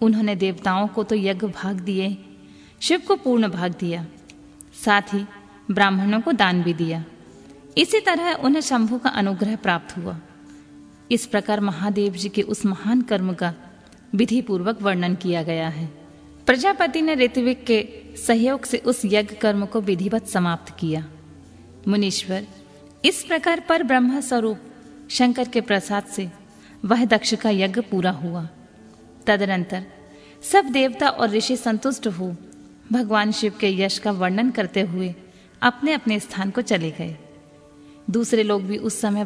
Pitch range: 185-240 Hz